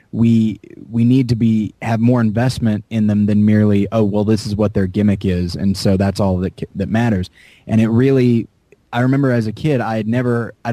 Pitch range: 105-125 Hz